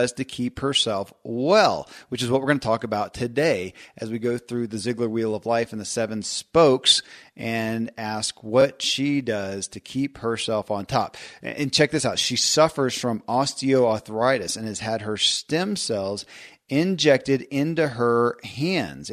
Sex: male